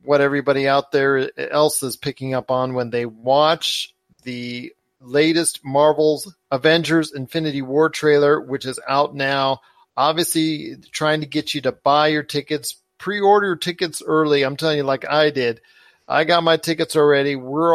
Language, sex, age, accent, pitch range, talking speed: English, male, 40-59, American, 135-160 Hz, 160 wpm